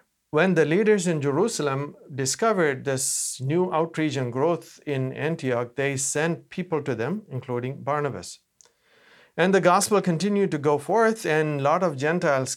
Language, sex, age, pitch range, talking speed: English, male, 50-69, 145-200 Hz, 155 wpm